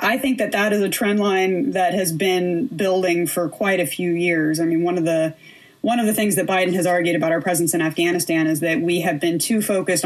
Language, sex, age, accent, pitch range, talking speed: English, female, 20-39, American, 165-195 Hz, 250 wpm